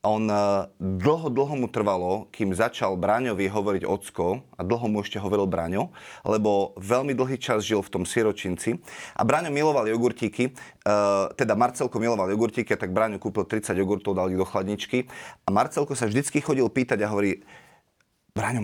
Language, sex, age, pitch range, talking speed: Slovak, male, 30-49, 100-130 Hz, 165 wpm